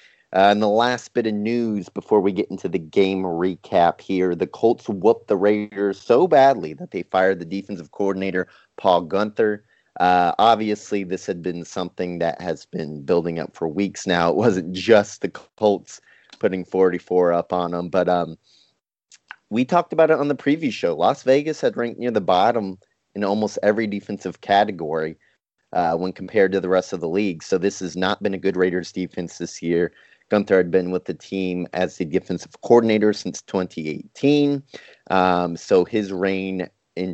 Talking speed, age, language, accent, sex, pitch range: 185 wpm, 30-49, English, American, male, 90-115 Hz